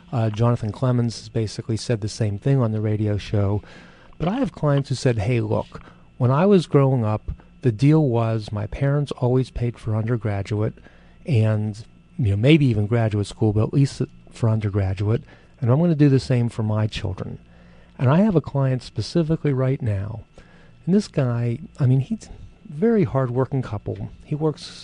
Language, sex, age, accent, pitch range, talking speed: English, male, 40-59, American, 105-135 Hz, 185 wpm